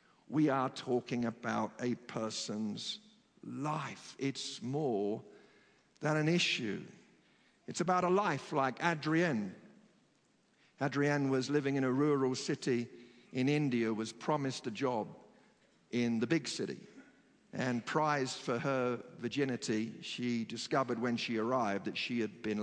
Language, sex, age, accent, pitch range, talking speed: English, male, 50-69, British, 115-135 Hz, 130 wpm